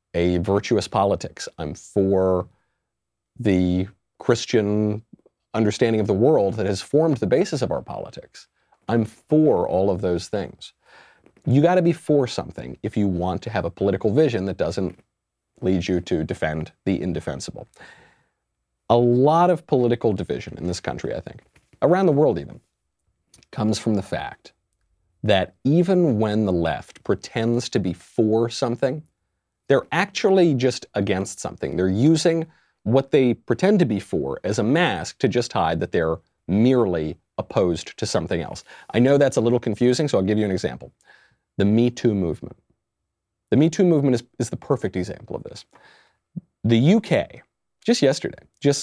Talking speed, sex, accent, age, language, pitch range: 165 wpm, male, American, 40-59, English, 95-135 Hz